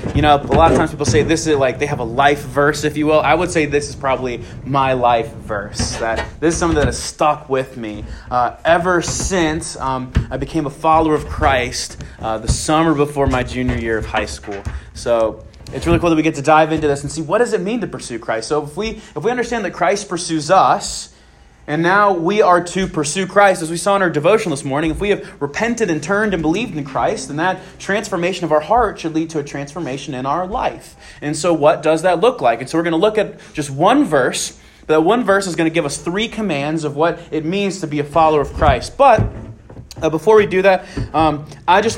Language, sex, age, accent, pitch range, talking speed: English, male, 20-39, American, 130-185 Hz, 245 wpm